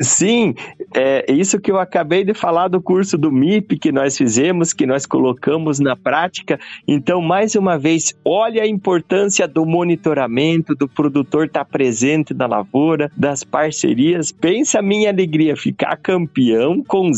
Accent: Brazilian